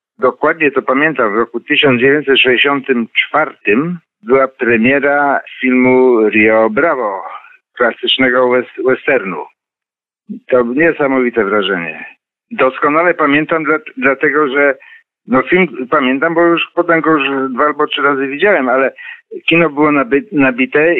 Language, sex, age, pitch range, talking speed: Polish, male, 50-69, 130-170 Hz, 115 wpm